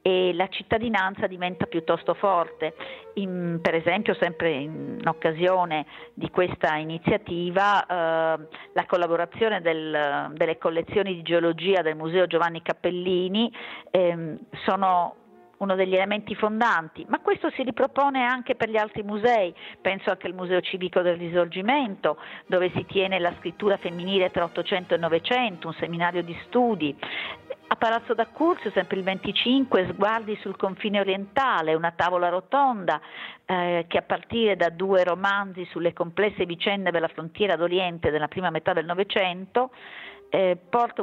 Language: Italian